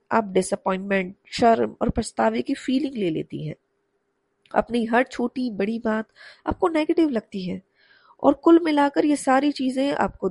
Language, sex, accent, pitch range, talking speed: Hindi, female, native, 215-280 Hz, 150 wpm